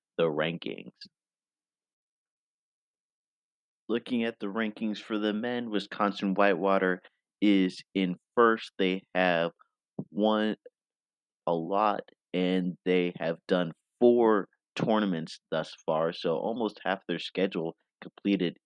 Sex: male